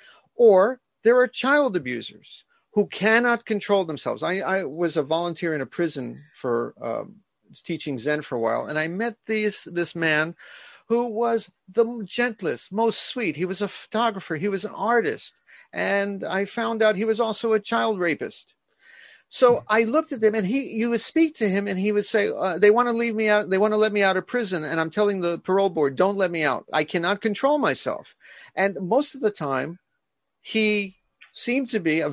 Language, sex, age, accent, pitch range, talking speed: English, male, 50-69, American, 170-220 Hz, 205 wpm